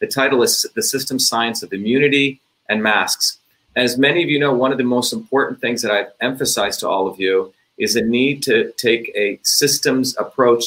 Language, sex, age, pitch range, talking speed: English, male, 40-59, 110-130 Hz, 200 wpm